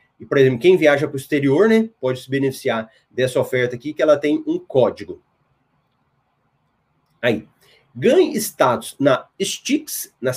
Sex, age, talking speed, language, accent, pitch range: male, 30-49, 150 wpm, Portuguese, Brazilian, 135-190 Hz